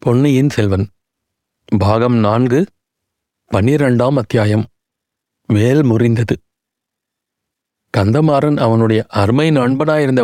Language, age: Tamil, 60-79